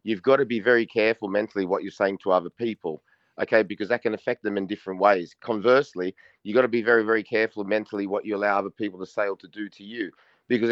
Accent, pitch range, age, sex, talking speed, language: Australian, 100-120 Hz, 30-49, male, 245 wpm, English